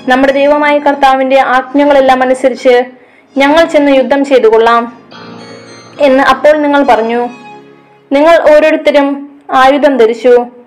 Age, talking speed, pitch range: 20-39, 100 wpm, 255-280 Hz